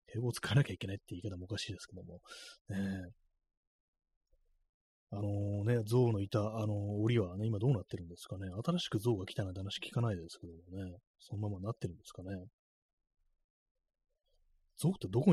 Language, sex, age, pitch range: Japanese, male, 30-49, 95-125 Hz